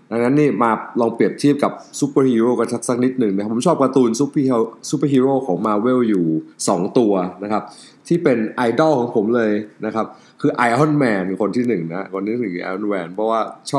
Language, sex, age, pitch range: Thai, male, 20-39, 100-130 Hz